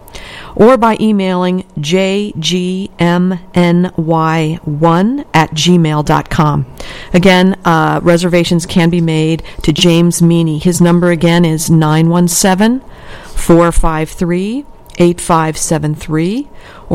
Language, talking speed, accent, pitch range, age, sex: English, 70 wpm, American, 155-185 Hz, 50-69, female